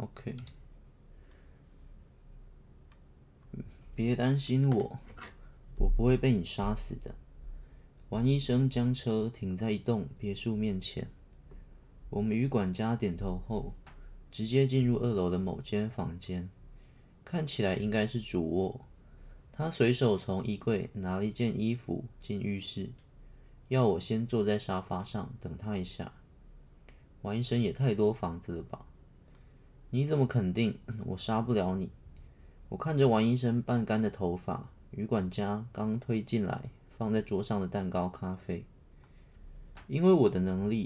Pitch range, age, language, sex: 90-120 Hz, 30-49, Chinese, male